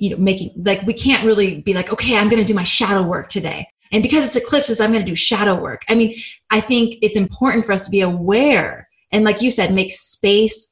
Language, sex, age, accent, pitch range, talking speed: English, female, 20-39, American, 180-230 Hz, 240 wpm